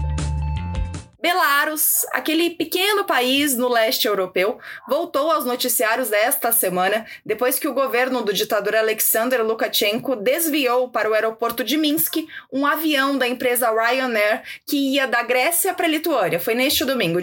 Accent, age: Brazilian, 20-39